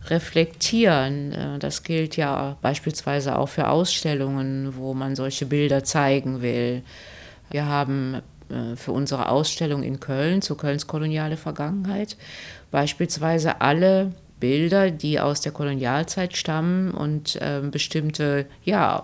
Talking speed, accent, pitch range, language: 115 wpm, German, 140-175 Hz, German